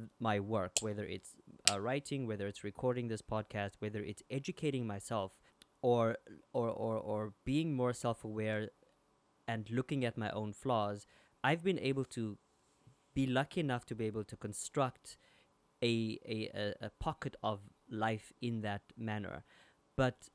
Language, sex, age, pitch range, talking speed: English, male, 20-39, 105-120 Hz, 150 wpm